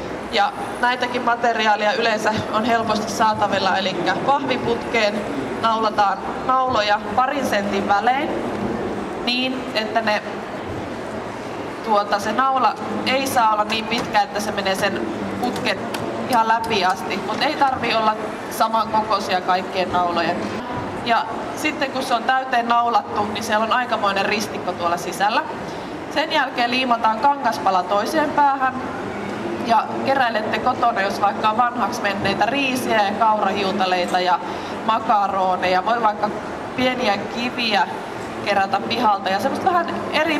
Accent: native